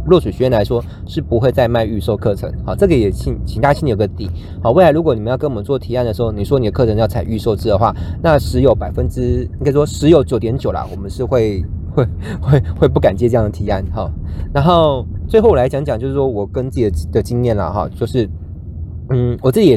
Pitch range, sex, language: 95-135 Hz, male, Chinese